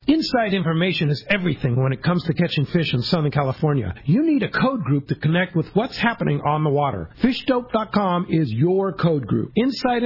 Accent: American